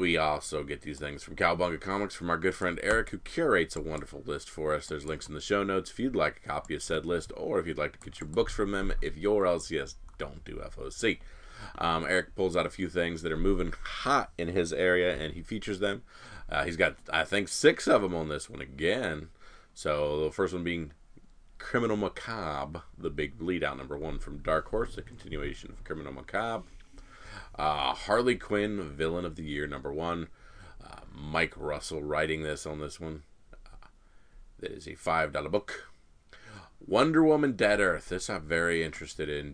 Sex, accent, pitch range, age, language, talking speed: male, American, 75-95 Hz, 30-49, English, 200 wpm